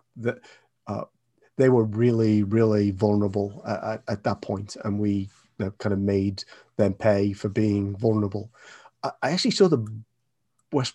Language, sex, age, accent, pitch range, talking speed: English, male, 30-49, British, 105-120 Hz, 160 wpm